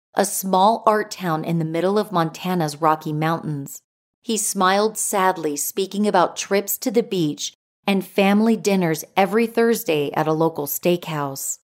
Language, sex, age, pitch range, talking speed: English, female, 40-59, 160-210 Hz, 150 wpm